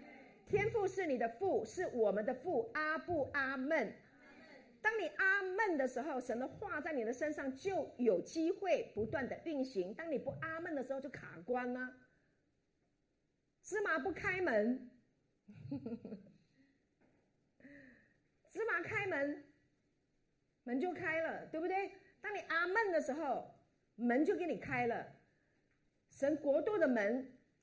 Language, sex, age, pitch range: Chinese, female, 50-69, 230-345 Hz